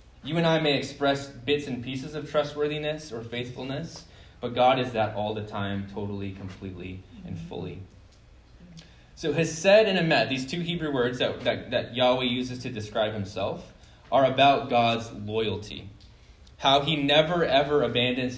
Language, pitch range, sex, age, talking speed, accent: English, 105-145 Hz, male, 20-39, 155 wpm, American